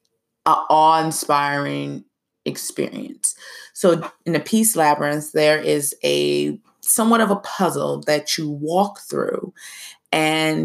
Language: English